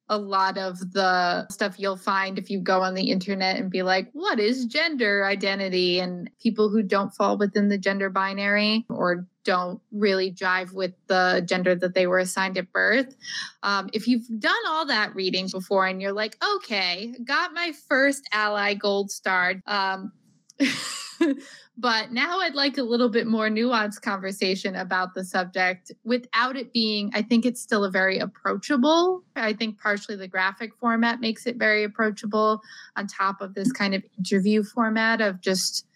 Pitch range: 190-245 Hz